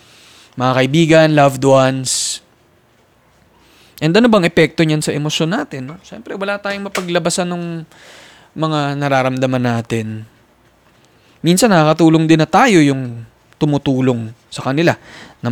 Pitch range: 120-155 Hz